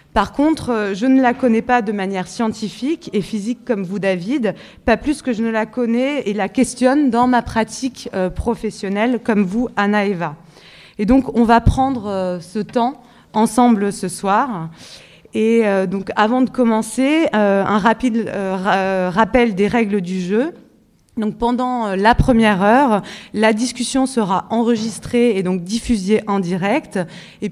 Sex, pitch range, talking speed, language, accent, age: female, 195-245 Hz, 150 wpm, French, French, 20-39